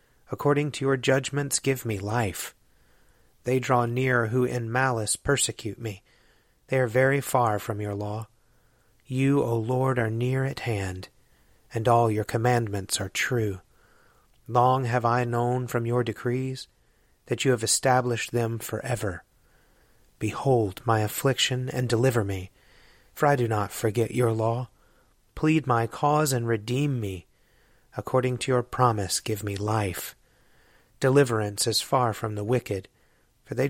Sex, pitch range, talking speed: male, 110-130 Hz, 145 wpm